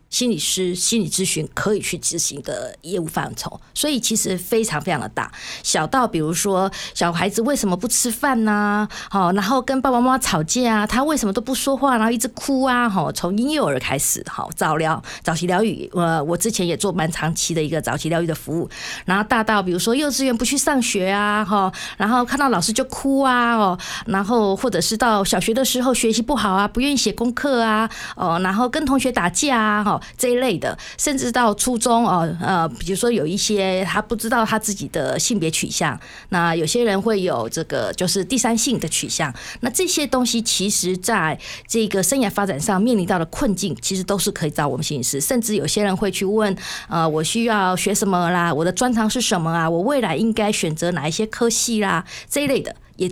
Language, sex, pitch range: Chinese, female, 180-240 Hz